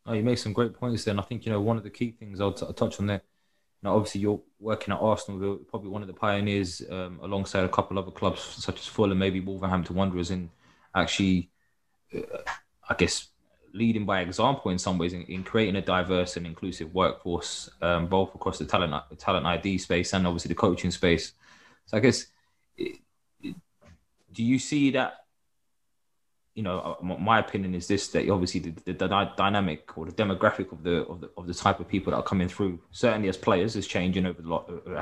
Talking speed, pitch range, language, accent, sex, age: 210 wpm, 90-100 Hz, English, British, male, 20-39